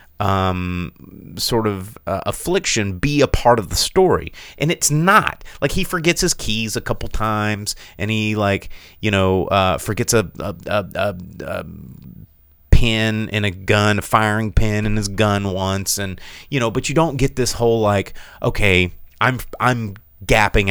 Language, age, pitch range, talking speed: English, 30-49, 90-120 Hz, 170 wpm